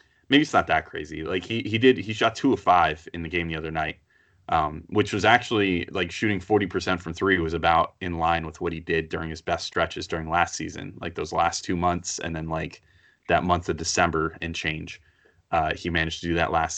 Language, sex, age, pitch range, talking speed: English, male, 30-49, 85-95 Hz, 235 wpm